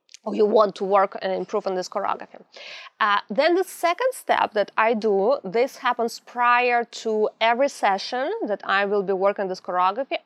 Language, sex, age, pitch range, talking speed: English, female, 20-39, 215-280 Hz, 175 wpm